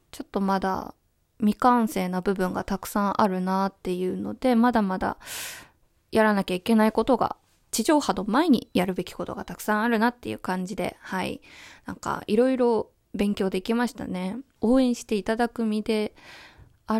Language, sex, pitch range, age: Japanese, female, 190-230 Hz, 20-39